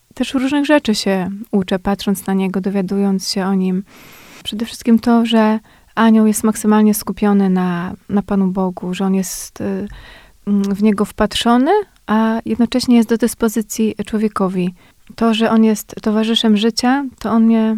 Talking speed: 150 wpm